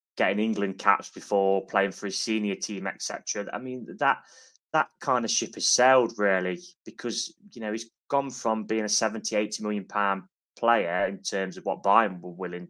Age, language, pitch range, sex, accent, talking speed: 20-39, English, 100-125 Hz, male, British, 190 wpm